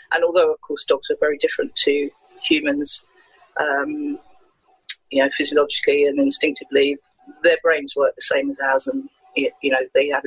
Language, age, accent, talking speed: English, 40-59, British, 165 wpm